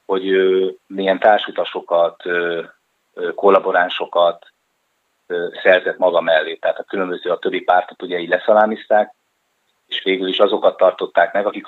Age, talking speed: 30-49, 115 wpm